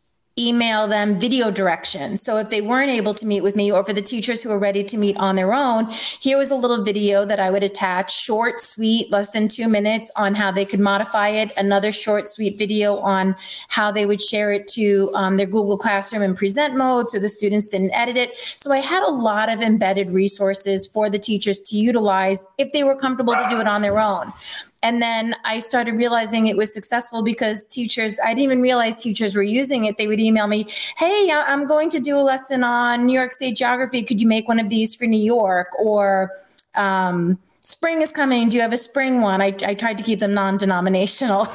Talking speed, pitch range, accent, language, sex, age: 220 wpm, 200-240 Hz, American, English, female, 30-49